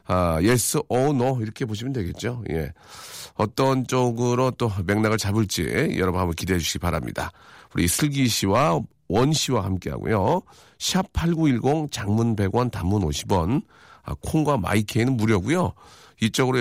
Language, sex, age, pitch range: Korean, male, 40-59, 95-135 Hz